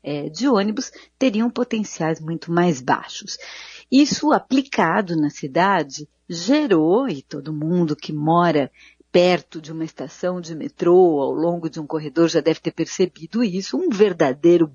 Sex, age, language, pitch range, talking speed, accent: female, 50-69, Portuguese, 170-260 Hz, 145 wpm, Brazilian